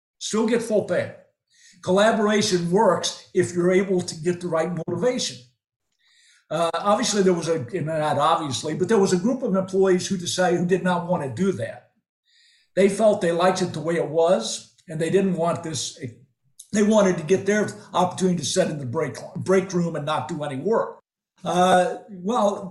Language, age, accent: English, 50-69, American